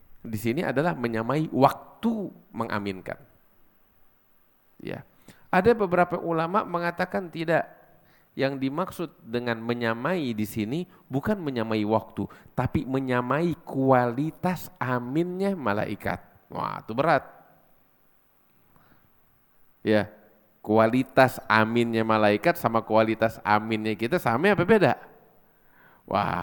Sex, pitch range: male, 105-175 Hz